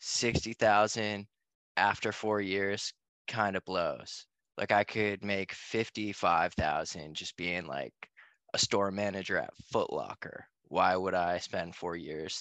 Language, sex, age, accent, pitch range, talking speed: English, male, 20-39, American, 100-115 Hz, 130 wpm